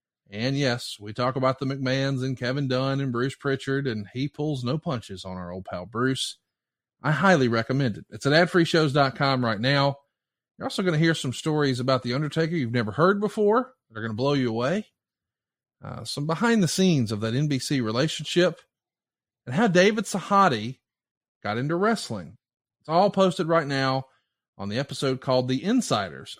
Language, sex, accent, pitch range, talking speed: English, male, American, 125-165 Hz, 175 wpm